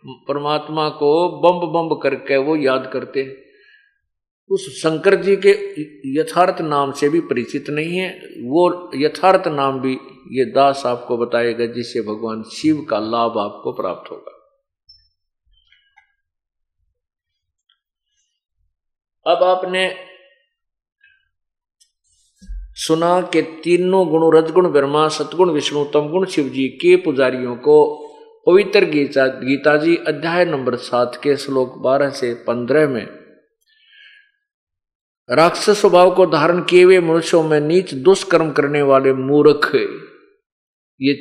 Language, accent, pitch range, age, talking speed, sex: Hindi, native, 135-195 Hz, 50-69, 110 wpm, male